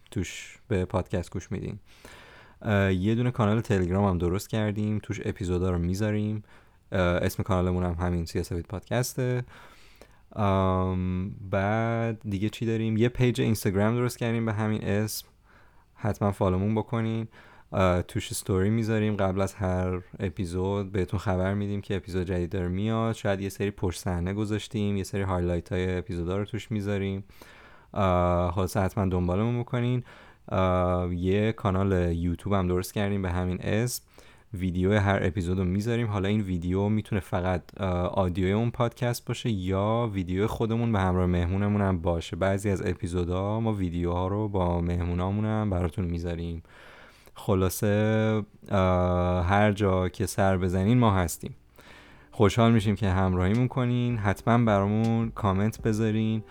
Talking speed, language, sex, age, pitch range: 135 wpm, Persian, male, 30-49, 90-110 Hz